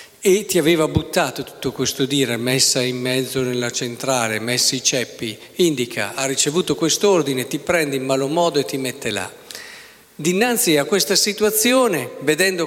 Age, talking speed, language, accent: 50-69, 155 wpm, Italian, native